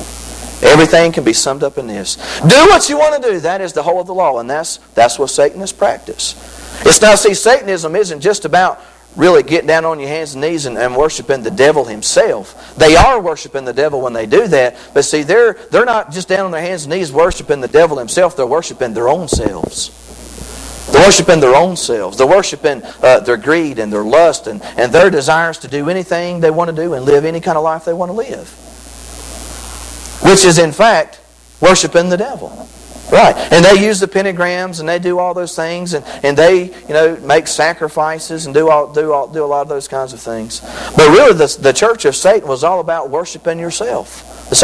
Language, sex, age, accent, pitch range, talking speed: English, male, 50-69, American, 130-185 Hz, 220 wpm